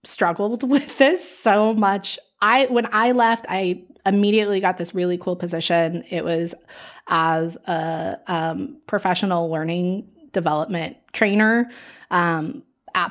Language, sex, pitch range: English, female, 175-225 Hz